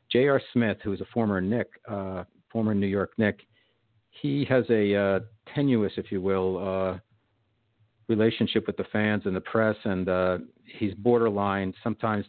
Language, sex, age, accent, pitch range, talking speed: English, male, 50-69, American, 95-110 Hz, 160 wpm